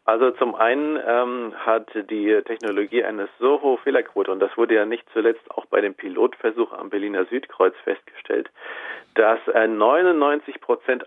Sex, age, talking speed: male, 40-59, 150 wpm